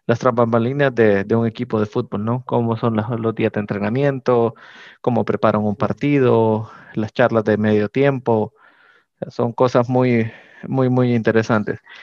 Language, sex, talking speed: Spanish, male, 160 wpm